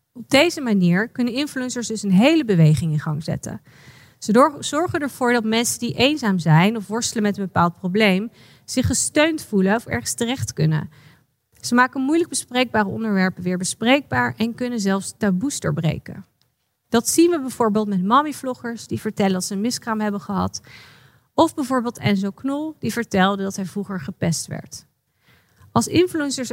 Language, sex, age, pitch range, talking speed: Dutch, female, 40-59, 185-260 Hz, 165 wpm